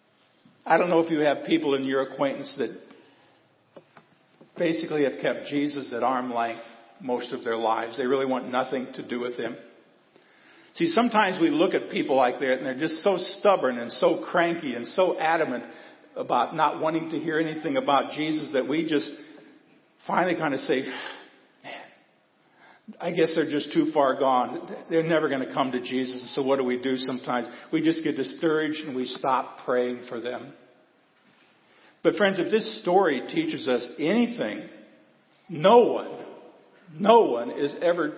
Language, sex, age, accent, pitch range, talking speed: English, male, 50-69, American, 135-175 Hz, 170 wpm